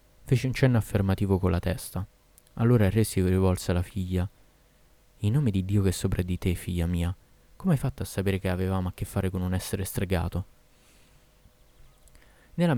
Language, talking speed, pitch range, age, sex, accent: Italian, 190 wpm, 95-125 Hz, 20-39, male, native